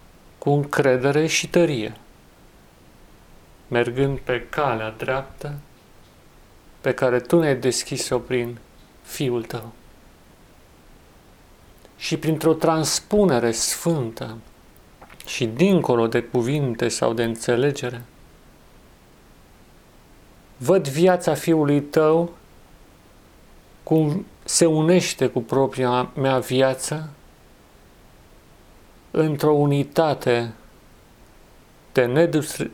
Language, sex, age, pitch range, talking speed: Romanian, male, 40-59, 115-150 Hz, 75 wpm